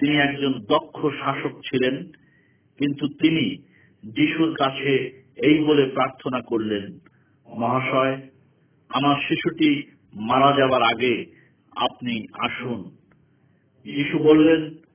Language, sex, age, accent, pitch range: Hindi, male, 50-69, native, 130-155 Hz